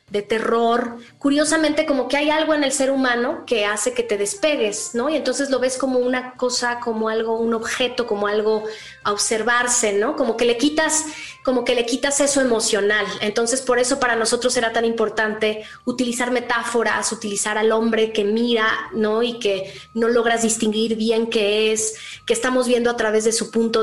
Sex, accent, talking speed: female, Mexican, 190 wpm